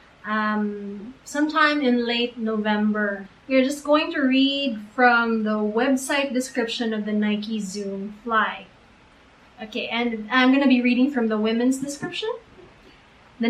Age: 20-39